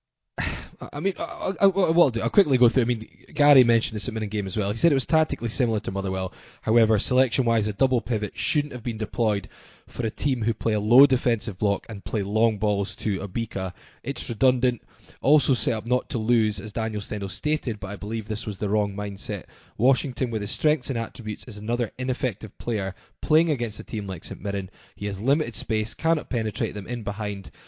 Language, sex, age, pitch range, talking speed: English, male, 20-39, 105-130 Hz, 215 wpm